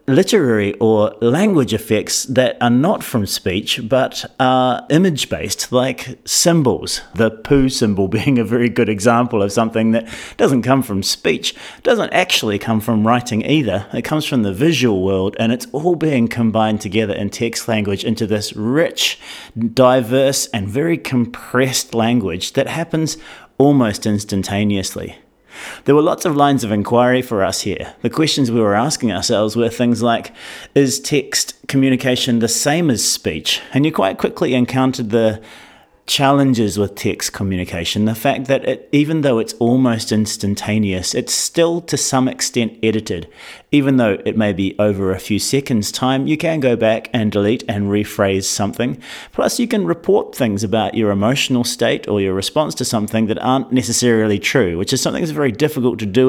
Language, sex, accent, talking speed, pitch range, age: English, male, Australian, 170 wpm, 105-135 Hz, 40-59